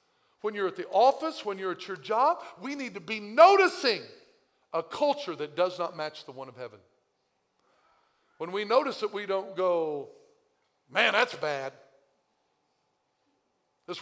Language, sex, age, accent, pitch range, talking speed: English, male, 50-69, American, 135-205 Hz, 155 wpm